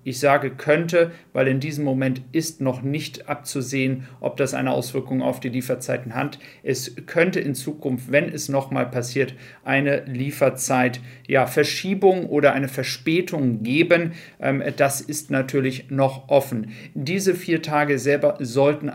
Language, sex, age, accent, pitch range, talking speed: German, male, 40-59, German, 135-155 Hz, 145 wpm